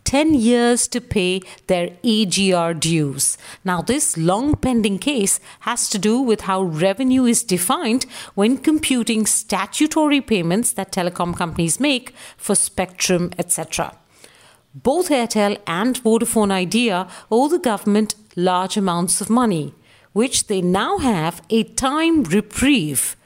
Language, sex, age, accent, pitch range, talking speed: English, female, 50-69, Indian, 185-240 Hz, 130 wpm